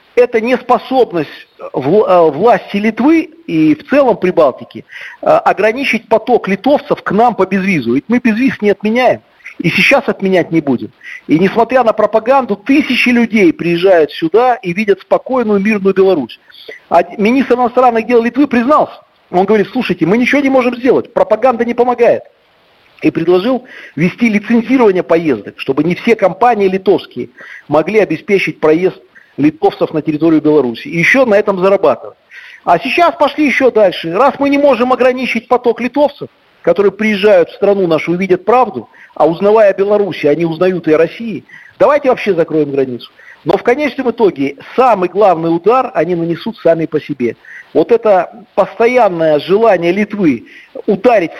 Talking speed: 150 wpm